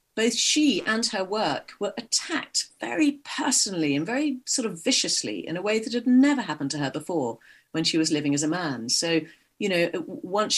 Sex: female